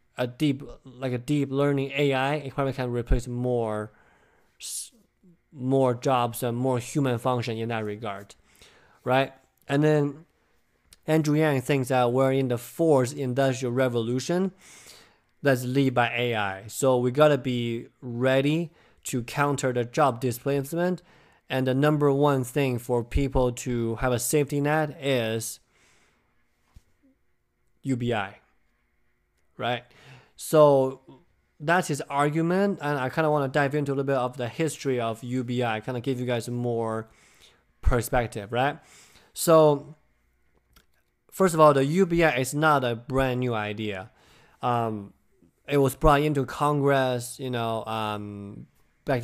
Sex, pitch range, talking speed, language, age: male, 120-145 Hz, 140 wpm, English, 20-39